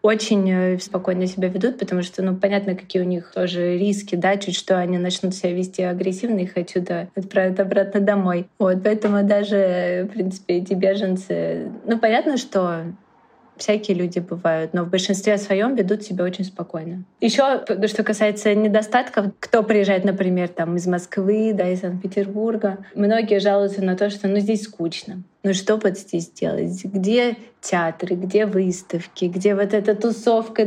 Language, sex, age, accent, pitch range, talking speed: Russian, female, 20-39, native, 185-215 Hz, 160 wpm